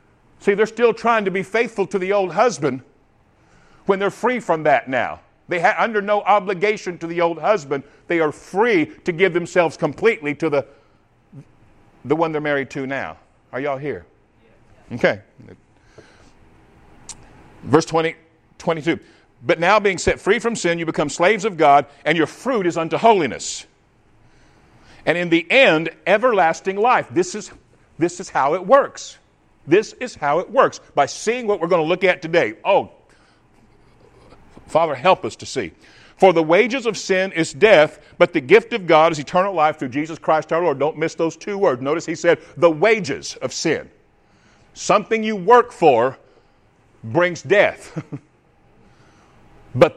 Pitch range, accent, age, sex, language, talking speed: 145-200 Hz, American, 50-69, male, English, 165 wpm